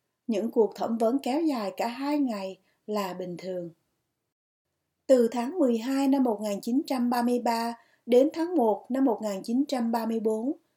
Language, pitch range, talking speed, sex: Vietnamese, 215-270 Hz, 125 wpm, female